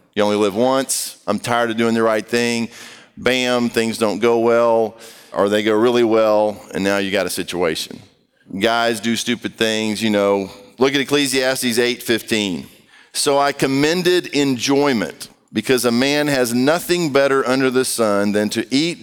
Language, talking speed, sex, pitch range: English, 165 wpm, male, 110-135 Hz